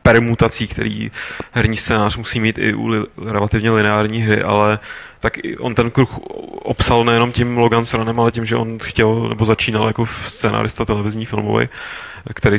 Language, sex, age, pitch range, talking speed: Czech, male, 20-39, 105-115 Hz, 155 wpm